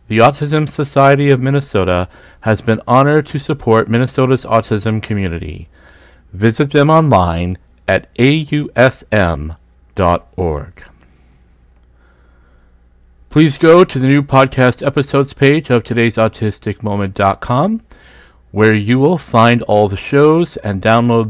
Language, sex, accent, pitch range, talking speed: English, male, American, 90-135 Hz, 105 wpm